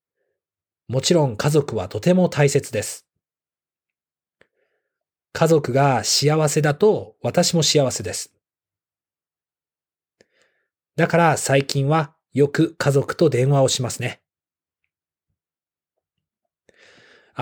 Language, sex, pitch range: Japanese, male, 125-170 Hz